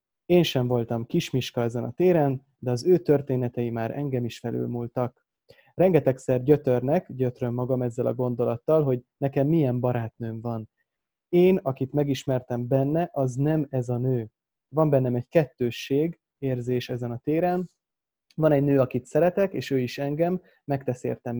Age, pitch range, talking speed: 20-39, 125-150 Hz, 155 wpm